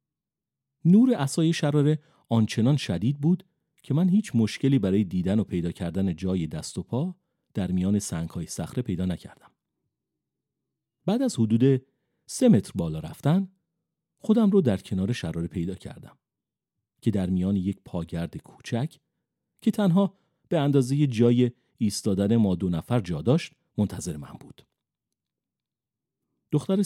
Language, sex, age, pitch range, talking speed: Persian, male, 40-59, 100-160 Hz, 135 wpm